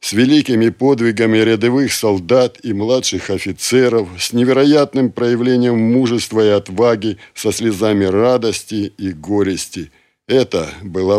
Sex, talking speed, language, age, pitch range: male, 115 wpm, Russian, 60-79, 100-120 Hz